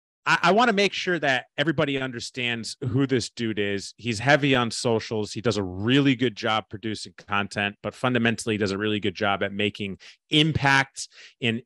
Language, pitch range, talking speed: English, 110-155 Hz, 180 wpm